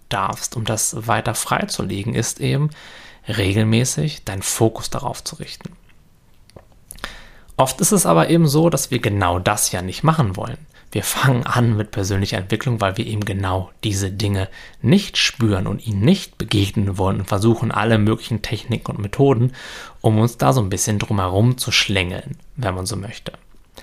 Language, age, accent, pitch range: German, 20-39, German, 100-130 Hz